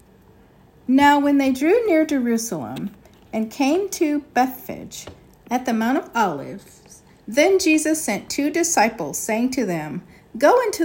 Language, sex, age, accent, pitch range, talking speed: English, female, 50-69, American, 195-300 Hz, 140 wpm